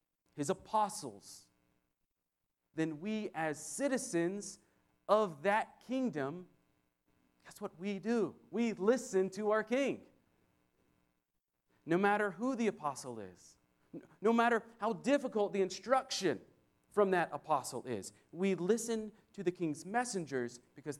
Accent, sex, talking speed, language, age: American, male, 115 wpm, English, 40-59